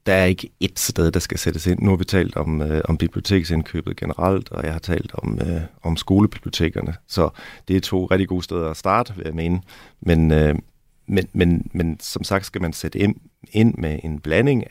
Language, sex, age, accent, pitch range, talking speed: Danish, male, 30-49, native, 80-95 Hz, 215 wpm